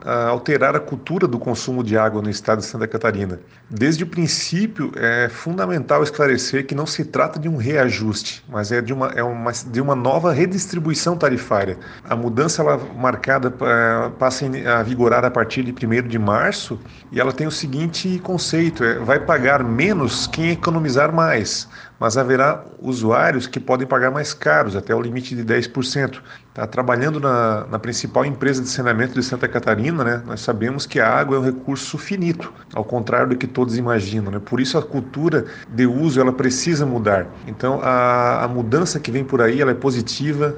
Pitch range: 120-150 Hz